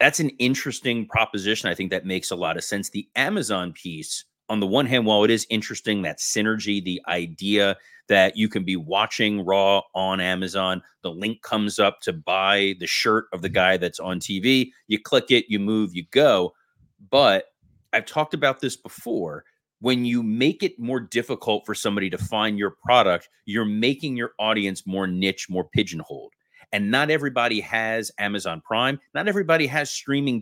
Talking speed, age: 180 wpm, 30-49